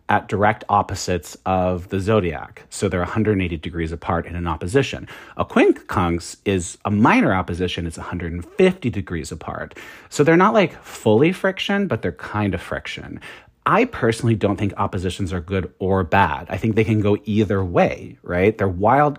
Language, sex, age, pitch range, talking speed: English, male, 40-59, 90-115 Hz, 170 wpm